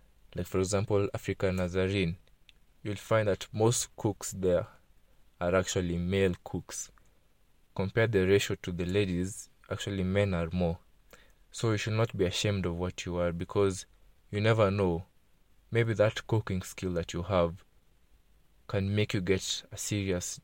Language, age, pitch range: English, 20-39, 90-100 Hz